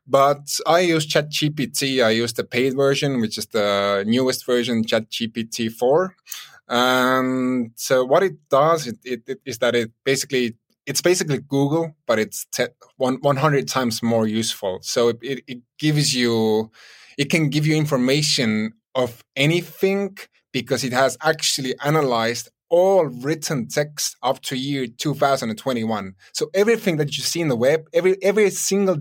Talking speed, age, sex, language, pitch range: 140 wpm, 20-39, male, English, 120-150 Hz